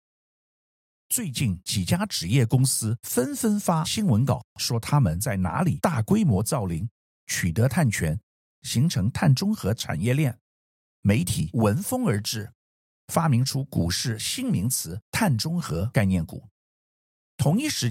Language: Chinese